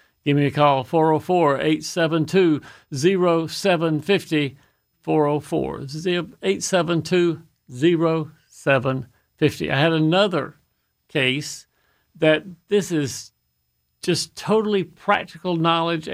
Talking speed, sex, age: 65 wpm, male, 60-79